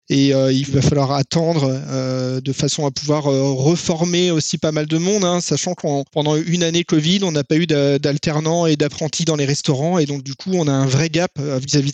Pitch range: 140-175 Hz